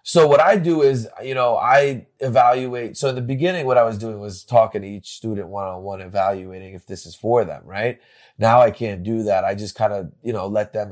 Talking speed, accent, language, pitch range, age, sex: 245 wpm, American, English, 100-125 Hz, 20-39, male